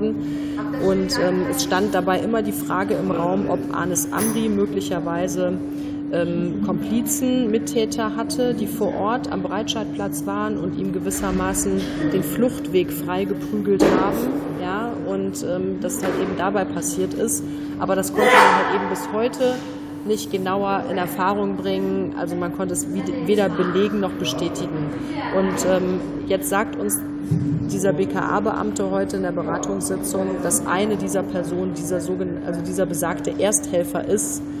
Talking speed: 140 wpm